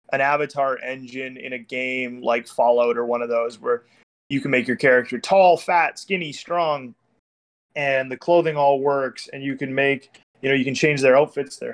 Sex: male